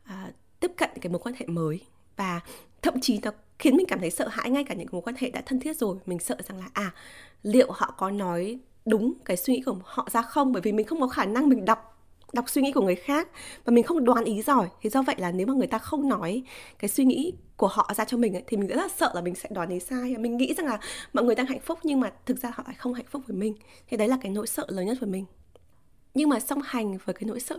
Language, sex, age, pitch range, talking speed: Vietnamese, female, 20-39, 195-260 Hz, 285 wpm